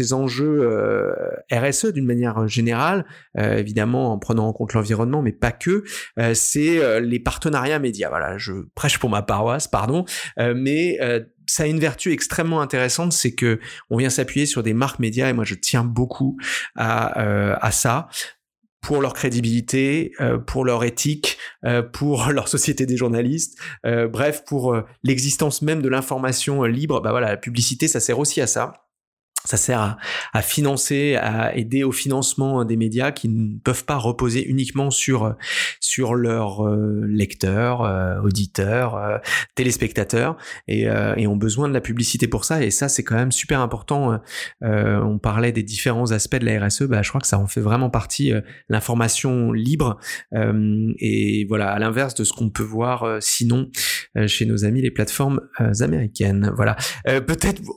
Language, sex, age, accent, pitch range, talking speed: French, male, 30-49, French, 110-140 Hz, 180 wpm